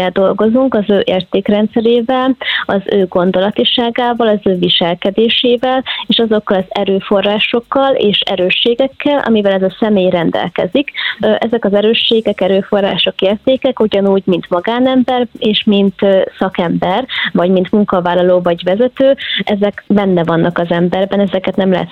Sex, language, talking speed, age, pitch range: female, Hungarian, 125 wpm, 20-39, 185-230 Hz